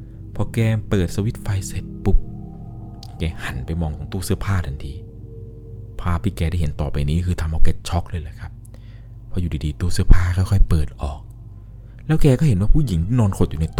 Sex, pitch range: male, 85-115 Hz